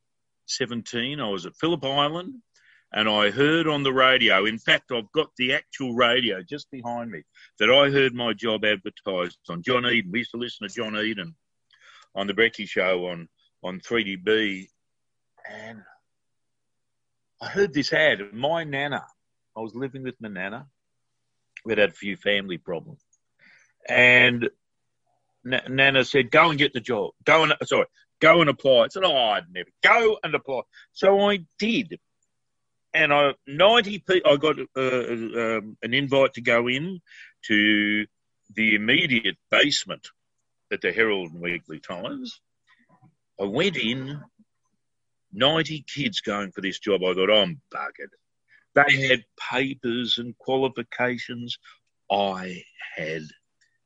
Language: English